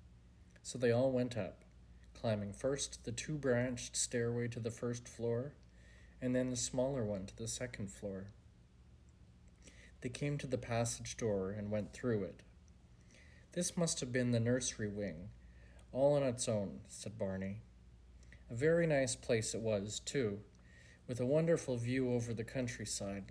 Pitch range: 85-125 Hz